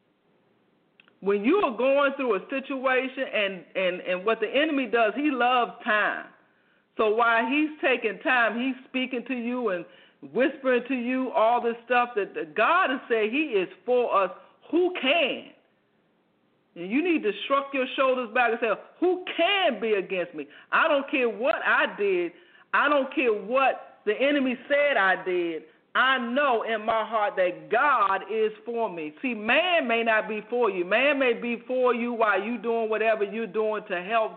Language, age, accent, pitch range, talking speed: English, 50-69, American, 210-285 Hz, 175 wpm